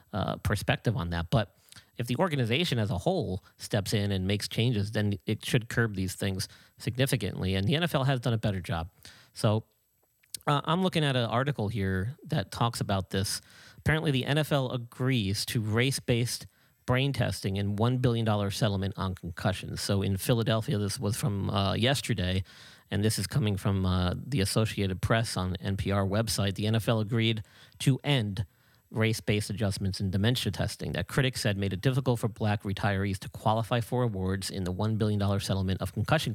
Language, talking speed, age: English, 180 wpm, 40-59